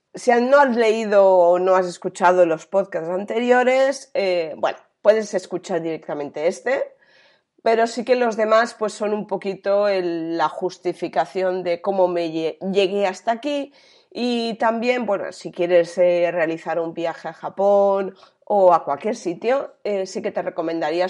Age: 30-49